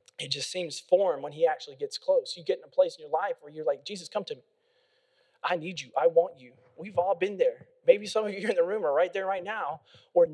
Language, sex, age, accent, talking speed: English, male, 20-39, American, 275 wpm